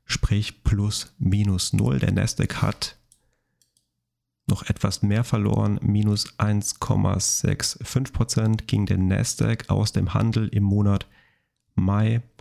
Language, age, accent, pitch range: German, 30-49, German, 100-120 Hz